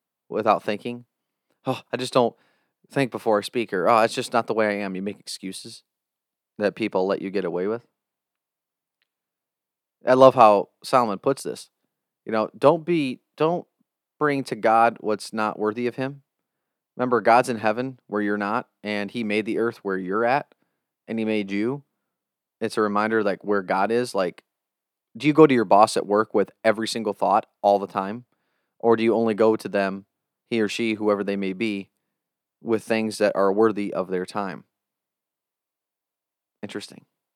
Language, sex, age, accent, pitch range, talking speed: English, male, 30-49, American, 105-130 Hz, 180 wpm